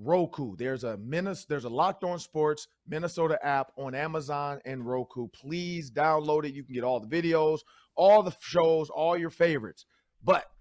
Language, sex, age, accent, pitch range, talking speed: English, male, 40-59, American, 135-170 Hz, 180 wpm